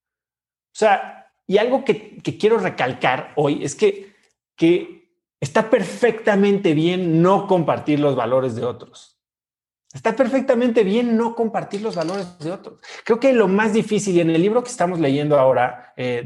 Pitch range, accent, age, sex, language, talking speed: 140-215 Hz, Mexican, 30-49, male, Spanish, 160 wpm